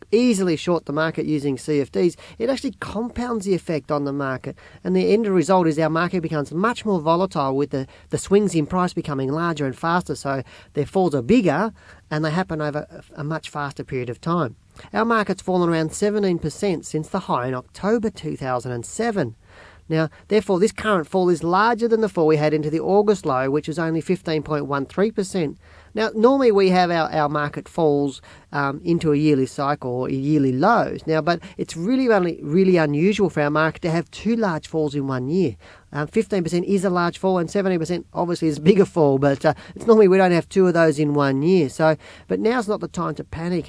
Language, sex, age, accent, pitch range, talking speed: English, male, 40-59, Australian, 150-190 Hz, 205 wpm